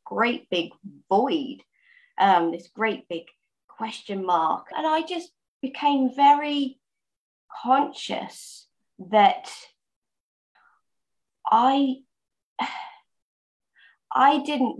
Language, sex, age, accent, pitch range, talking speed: English, female, 20-39, British, 185-260 Hz, 75 wpm